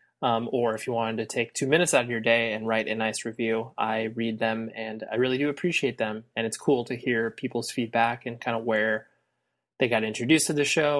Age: 20-39